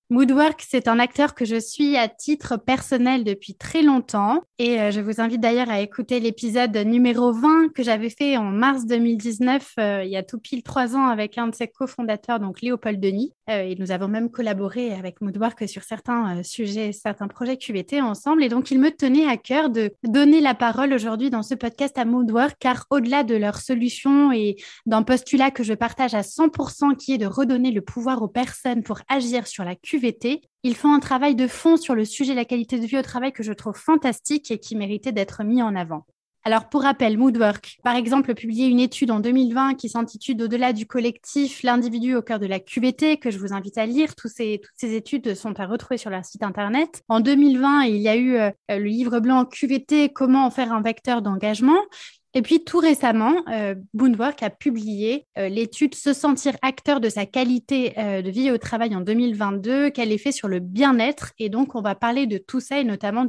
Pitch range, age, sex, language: 220-265 Hz, 20-39, female, French